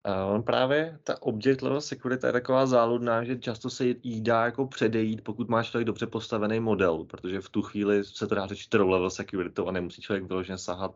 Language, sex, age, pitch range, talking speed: Czech, male, 20-39, 95-110 Hz, 195 wpm